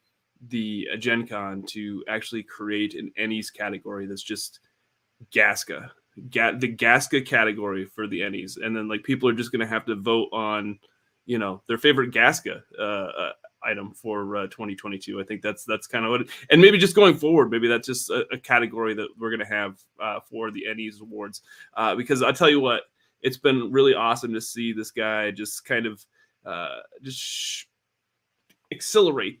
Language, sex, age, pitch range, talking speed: English, male, 20-39, 110-155 Hz, 185 wpm